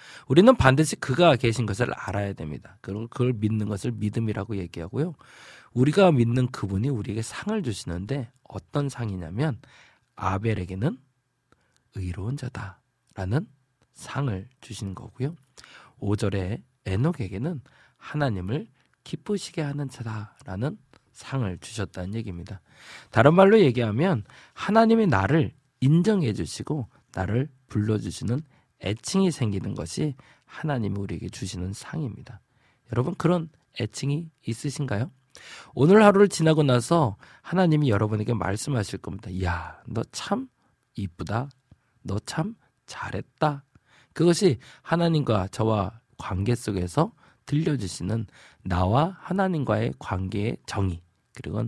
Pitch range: 105-145 Hz